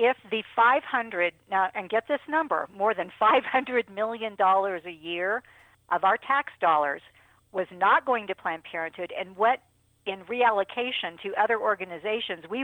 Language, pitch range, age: English, 185-260 Hz, 50-69